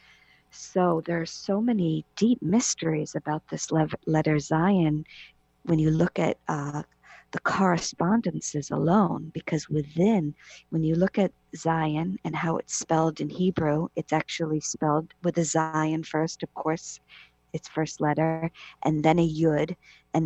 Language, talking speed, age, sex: English, 145 wpm, 50-69, female